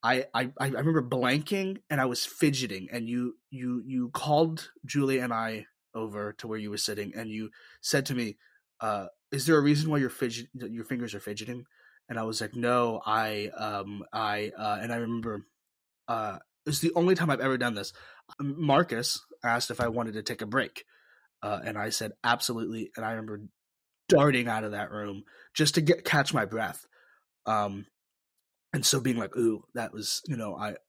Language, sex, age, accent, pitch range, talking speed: English, male, 20-39, American, 105-130 Hz, 195 wpm